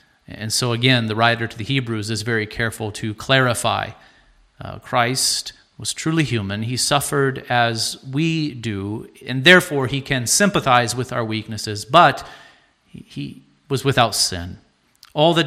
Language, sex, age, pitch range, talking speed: English, male, 40-59, 110-135 Hz, 150 wpm